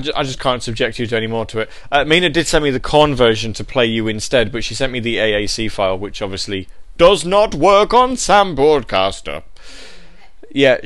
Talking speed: 210 wpm